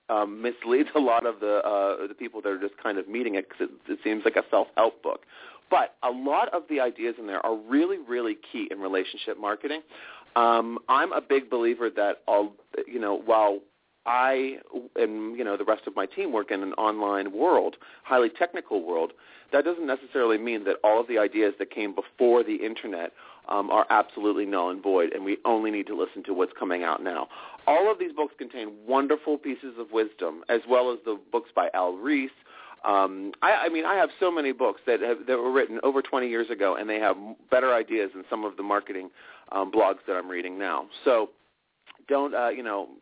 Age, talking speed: 40-59, 215 wpm